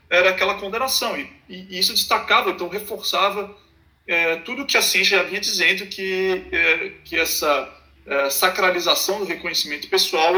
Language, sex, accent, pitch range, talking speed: Portuguese, male, Brazilian, 160-200 Hz, 150 wpm